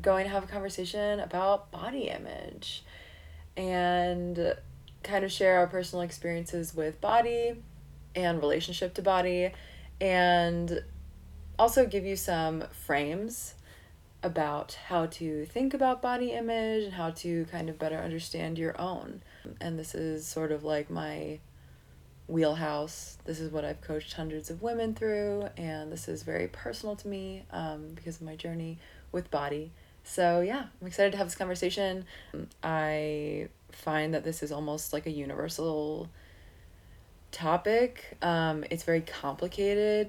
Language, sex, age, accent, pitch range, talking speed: English, female, 20-39, American, 150-180 Hz, 145 wpm